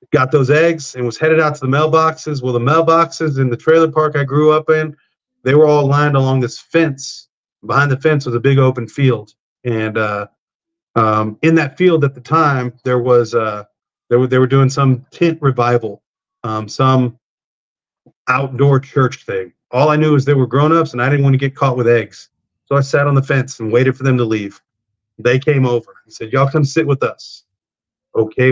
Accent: American